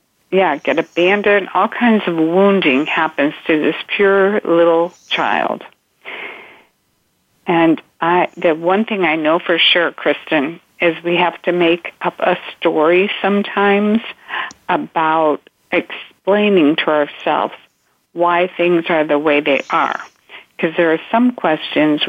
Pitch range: 160-190 Hz